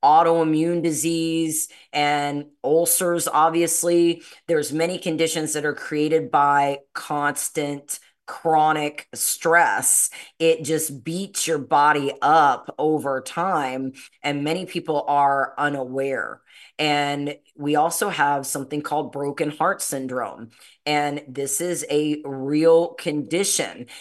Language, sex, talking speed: English, female, 105 wpm